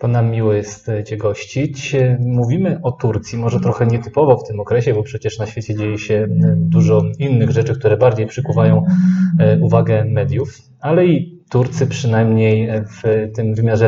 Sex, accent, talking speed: male, native, 155 wpm